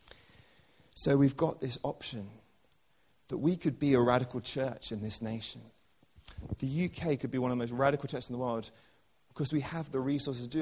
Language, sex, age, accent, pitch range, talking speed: English, male, 30-49, British, 115-145 Hz, 200 wpm